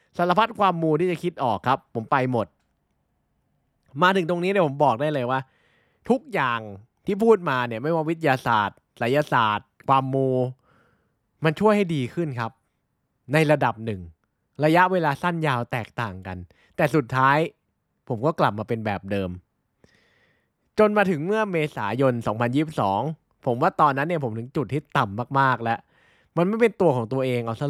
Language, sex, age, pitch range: Thai, male, 20-39, 115-165 Hz